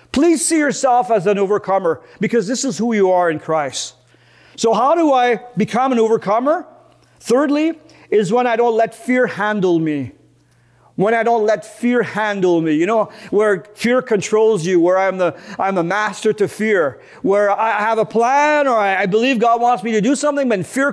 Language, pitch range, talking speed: English, 195-250 Hz, 190 wpm